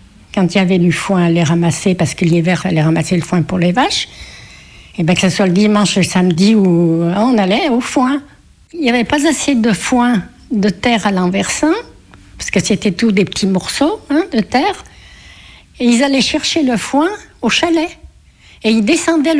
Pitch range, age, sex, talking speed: 180-245 Hz, 60-79, female, 205 wpm